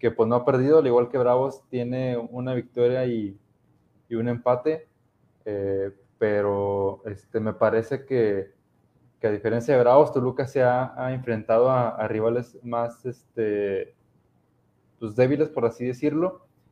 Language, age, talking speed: Spanish, 20-39, 150 wpm